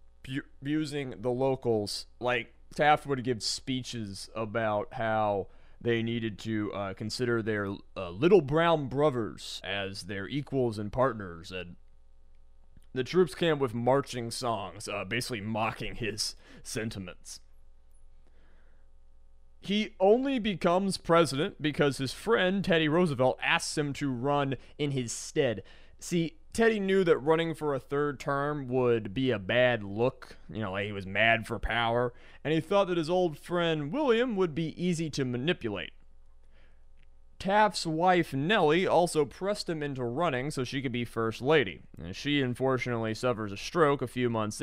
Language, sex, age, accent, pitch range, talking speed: English, male, 30-49, American, 105-155 Hz, 150 wpm